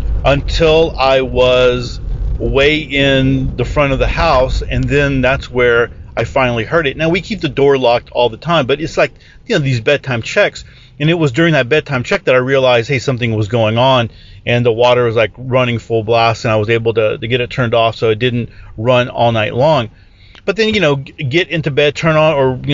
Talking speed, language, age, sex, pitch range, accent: 225 wpm, English, 40-59, male, 115-145 Hz, American